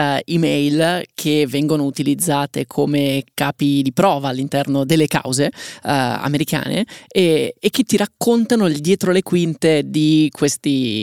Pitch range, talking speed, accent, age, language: 140-160 Hz, 130 wpm, native, 20-39, Italian